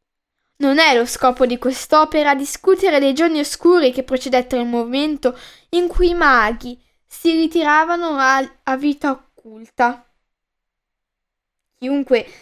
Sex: female